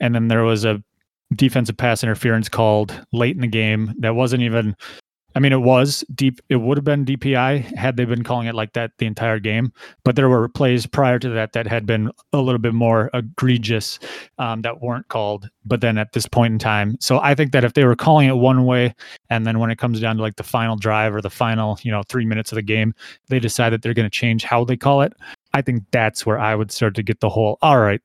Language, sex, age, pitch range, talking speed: English, male, 30-49, 110-125 Hz, 250 wpm